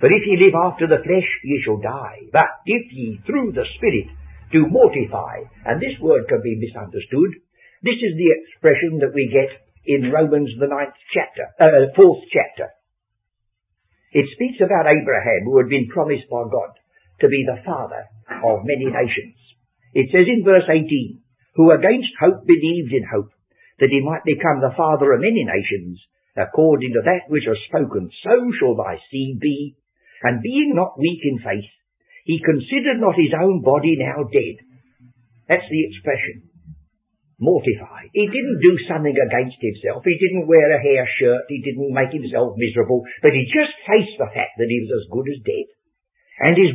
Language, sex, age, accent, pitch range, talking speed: English, male, 60-79, British, 125-195 Hz, 175 wpm